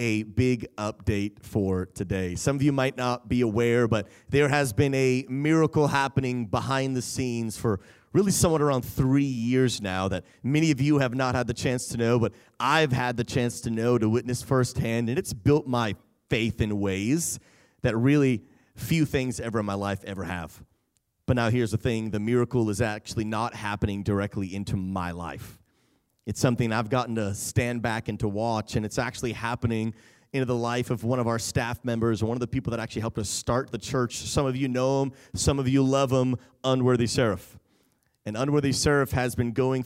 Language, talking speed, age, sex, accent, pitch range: English, 200 wpm, 30-49, male, American, 110-135 Hz